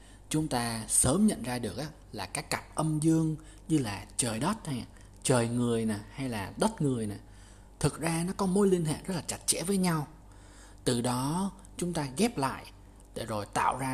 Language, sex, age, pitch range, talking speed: Vietnamese, male, 20-39, 100-145 Hz, 200 wpm